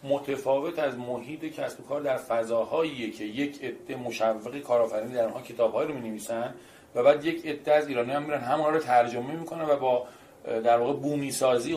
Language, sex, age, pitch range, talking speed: Persian, male, 40-59, 115-145 Hz, 185 wpm